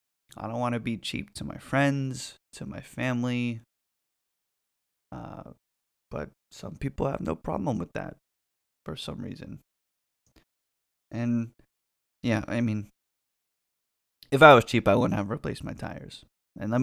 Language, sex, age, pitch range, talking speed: English, male, 20-39, 85-130 Hz, 145 wpm